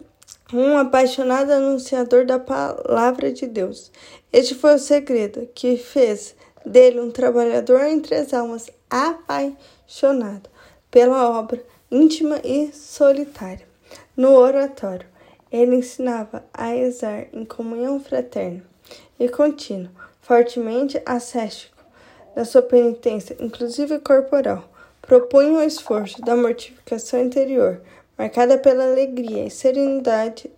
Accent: Brazilian